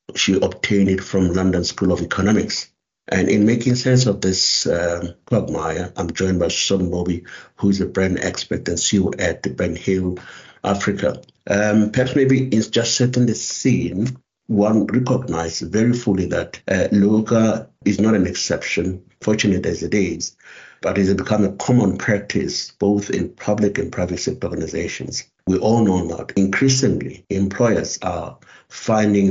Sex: male